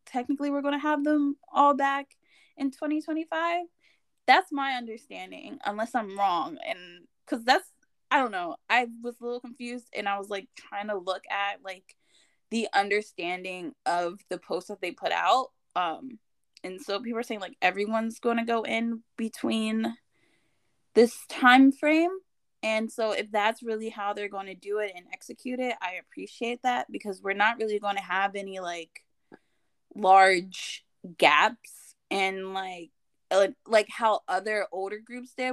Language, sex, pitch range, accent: English, female, 190-270 Hz, American